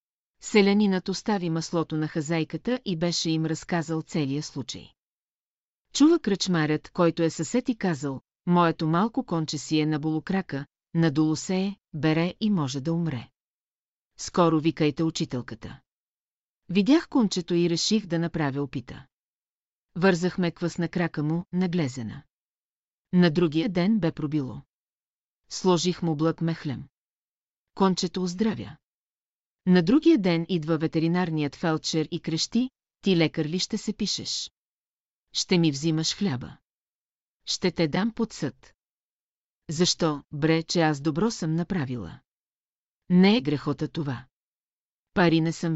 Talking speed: 125 wpm